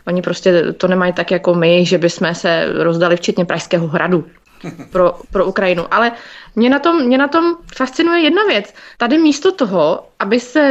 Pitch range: 200-280 Hz